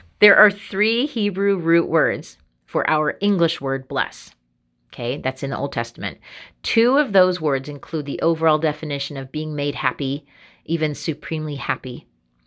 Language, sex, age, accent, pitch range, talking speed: English, female, 30-49, American, 130-165 Hz, 155 wpm